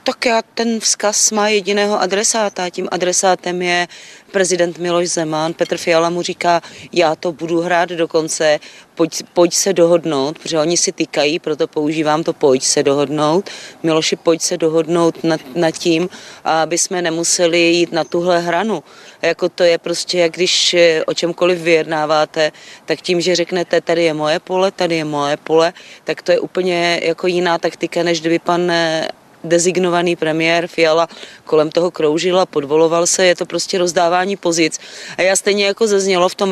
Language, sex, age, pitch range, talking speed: Czech, female, 30-49, 155-185 Hz, 170 wpm